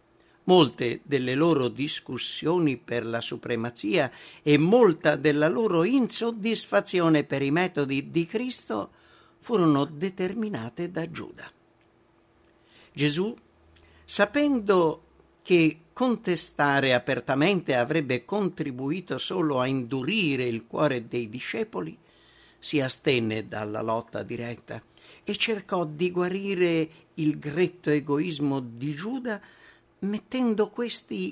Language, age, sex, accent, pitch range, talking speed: English, 50-69, male, Italian, 125-180 Hz, 100 wpm